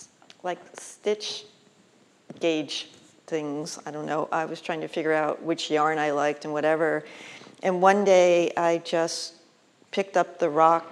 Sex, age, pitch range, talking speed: female, 40-59, 160-180 Hz, 155 wpm